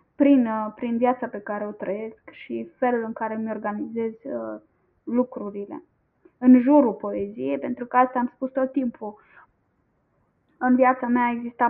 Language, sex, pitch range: Romanian, female, 245-295 Hz